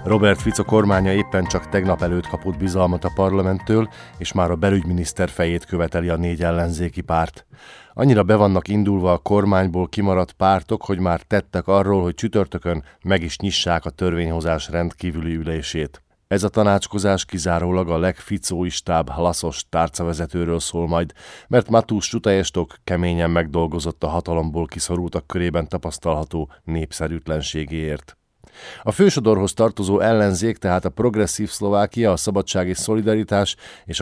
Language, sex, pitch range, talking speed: Hungarian, male, 85-100 Hz, 130 wpm